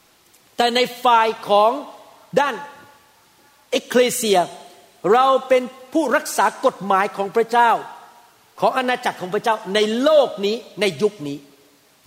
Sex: male